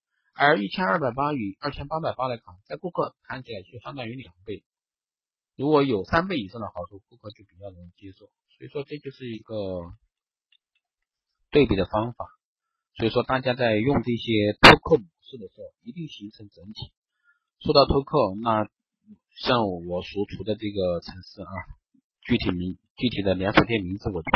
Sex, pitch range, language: male, 100-140 Hz, Chinese